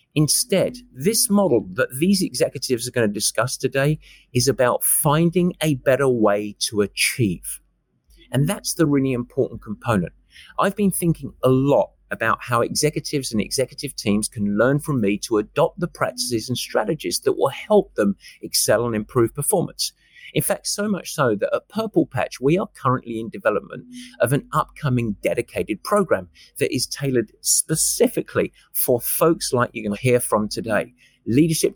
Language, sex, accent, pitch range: English, male, British, 120-170 Hz